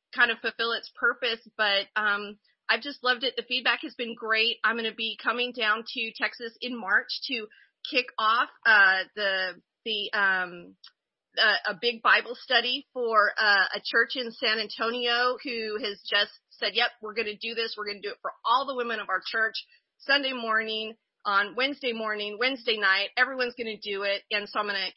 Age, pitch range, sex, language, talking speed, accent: 30-49, 205-250 Hz, female, English, 200 wpm, American